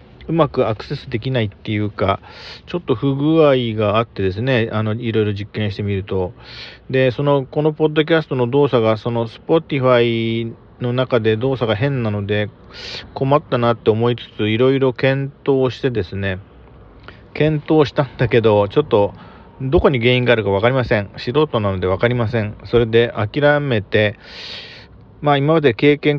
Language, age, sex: Japanese, 40-59, male